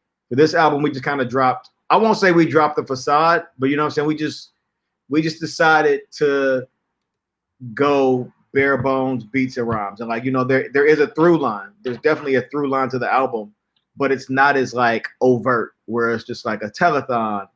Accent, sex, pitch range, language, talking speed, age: American, male, 125-150 Hz, English, 210 wpm, 30-49